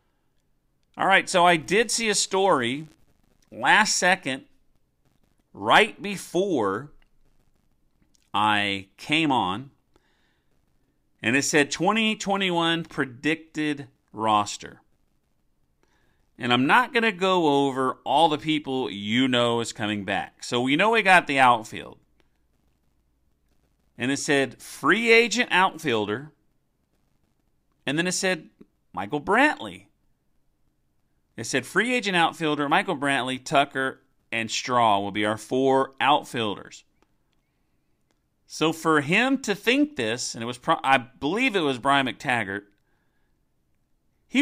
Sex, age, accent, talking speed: male, 40-59, American, 120 wpm